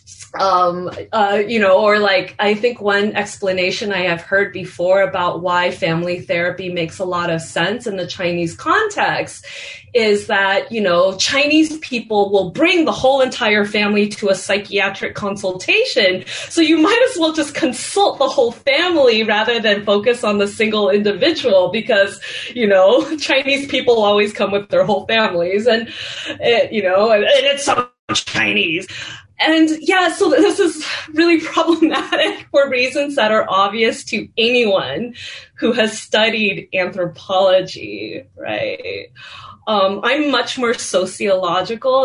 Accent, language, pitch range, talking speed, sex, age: American, English, 180-250 Hz, 150 wpm, female, 20-39